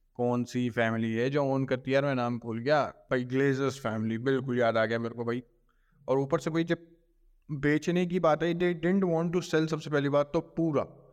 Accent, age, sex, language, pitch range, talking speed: native, 20-39, male, Hindi, 125-150 Hz, 215 wpm